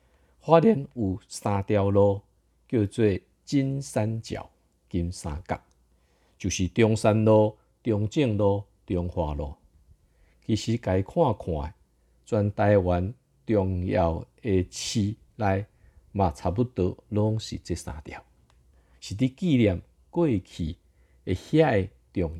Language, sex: Chinese, male